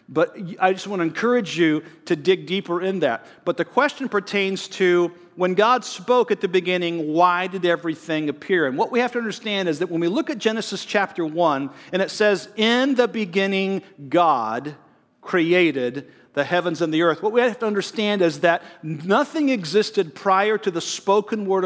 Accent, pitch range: American, 165-205 Hz